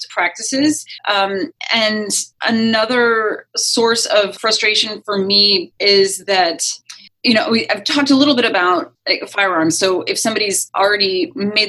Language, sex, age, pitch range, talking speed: English, female, 30-49, 190-280 Hz, 130 wpm